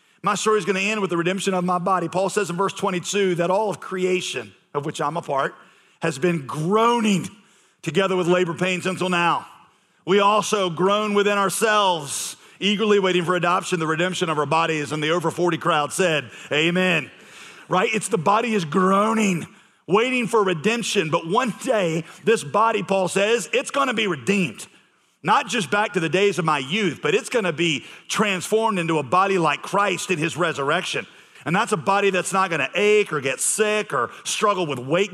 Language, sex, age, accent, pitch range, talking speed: English, male, 40-59, American, 165-205 Hz, 195 wpm